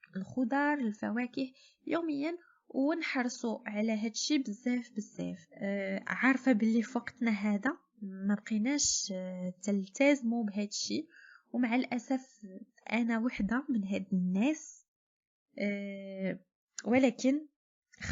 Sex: female